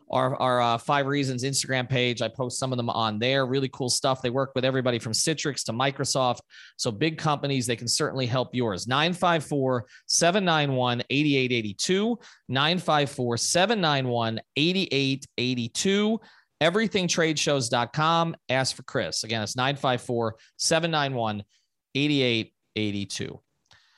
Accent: American